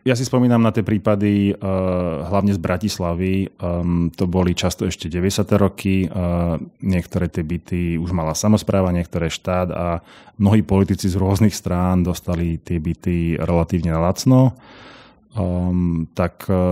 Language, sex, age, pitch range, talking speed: Slovak, male, 30-49, 80-95 Hz, 125 wpm